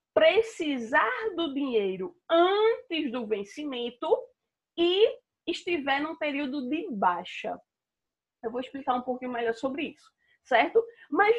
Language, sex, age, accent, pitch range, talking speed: Portuguese, female, 20-39, Brazilian, 235-340 Hz, 115 wpm